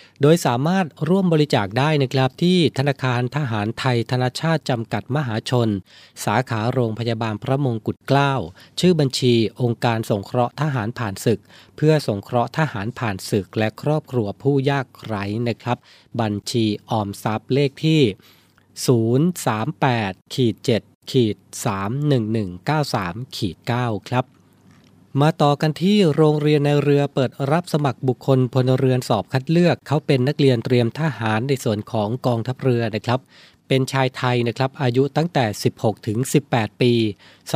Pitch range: 115-140 Hz